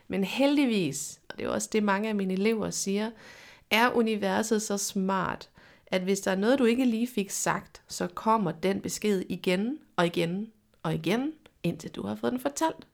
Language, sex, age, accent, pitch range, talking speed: Danish, female, 30-49, native, 190-235 Hz, 190 wpm